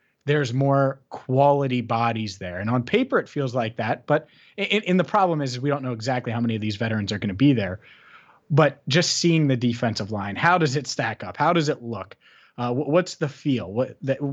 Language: English